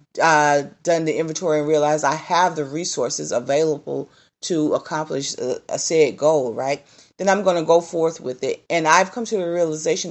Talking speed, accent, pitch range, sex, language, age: 190 wpm, American, 150-185 Hz, female, English, 40-59